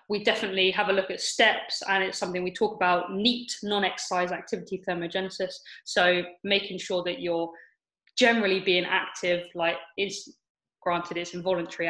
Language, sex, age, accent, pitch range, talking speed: English, female, 20-39, British, 175-205 Hz, 150 wpm